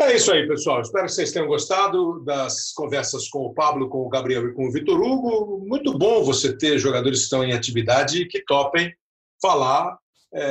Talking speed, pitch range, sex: 205 wpm, 125-180 Hz, male